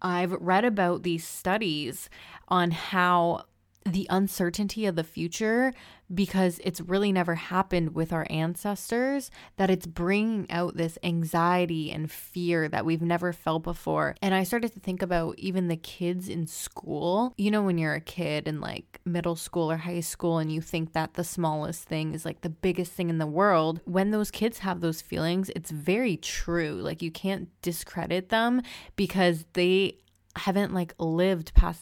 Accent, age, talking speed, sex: American, 20-39, 175 wpm, female